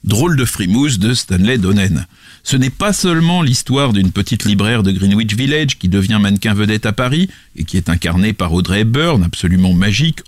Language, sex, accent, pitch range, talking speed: French, male, French, 100-165 Hz, 185 wpm